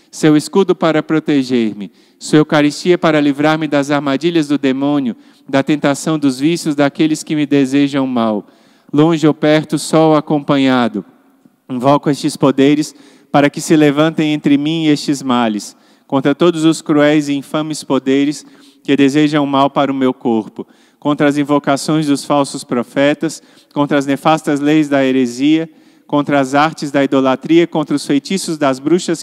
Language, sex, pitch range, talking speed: Portuguese, male, 140-165 Hz, 155 wpm